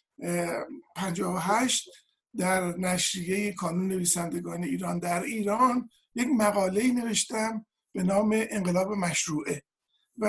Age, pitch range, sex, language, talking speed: 50-69, 185-240 Hz, male, Persian, 95 wpm